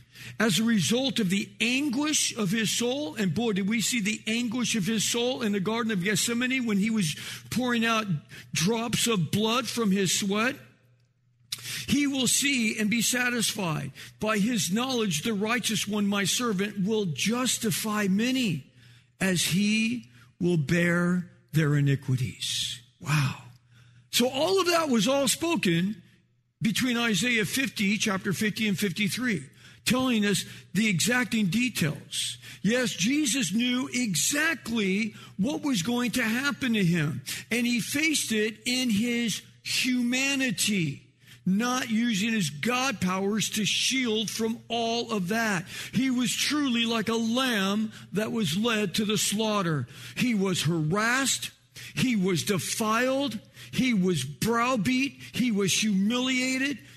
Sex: male